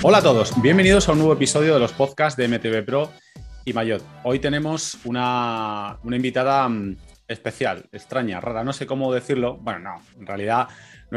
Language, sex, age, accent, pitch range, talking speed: Spanish, male, 30-49, Spanish, 110-135 Hz, 175 wpm